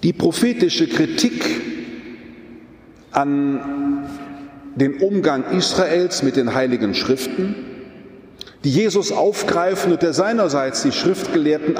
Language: German